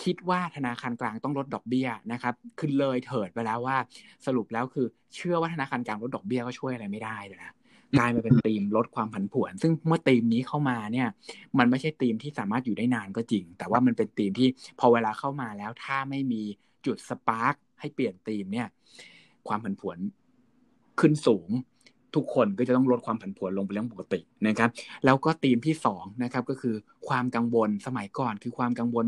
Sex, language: male, Thai